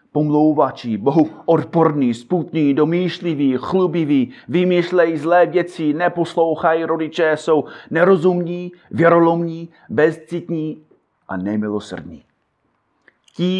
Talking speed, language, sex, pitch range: 80 wpm, Czech, male, 135-175 Hz